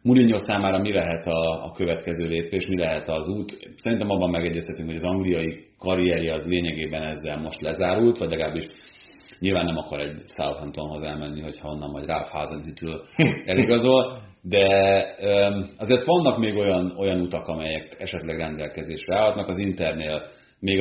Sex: male